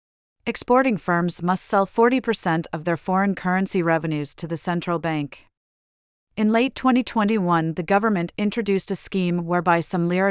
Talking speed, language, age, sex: 145 wpm, English, 30-49, female